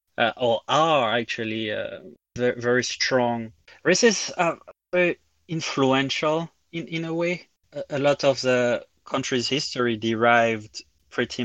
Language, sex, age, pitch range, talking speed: English, male, 20-39, 115-140 Hz, 130 wpm